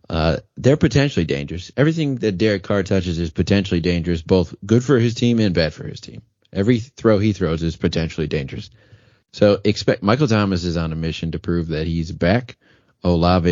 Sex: male